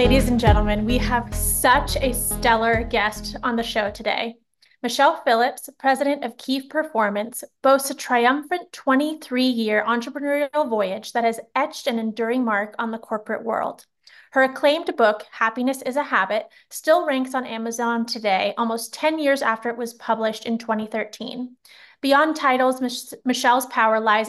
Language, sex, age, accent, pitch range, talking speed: English, female, 30-49, American, 225-270 Hz, 150 wpm